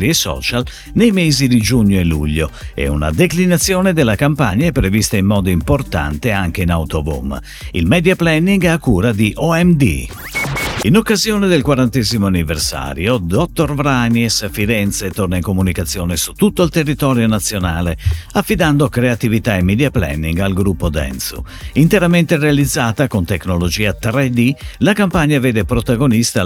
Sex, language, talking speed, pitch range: male, Italian, 140 wpm, 90-150 Hz